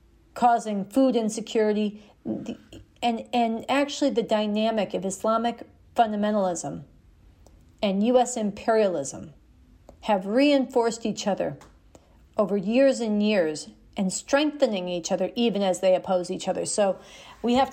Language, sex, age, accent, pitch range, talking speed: English, female, 40-59, American, 210-280 Hz, 120 wpm